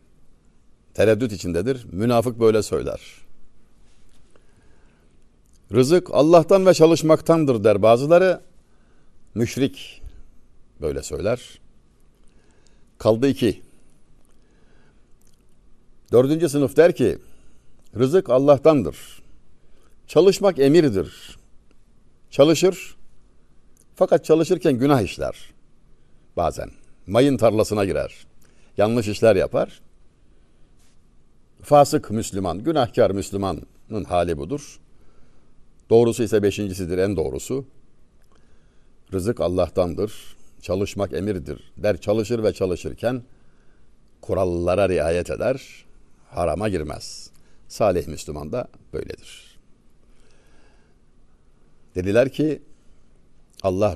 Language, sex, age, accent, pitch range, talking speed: Turkish, male, 60-79, native, 90-135 Hz, 75 wpm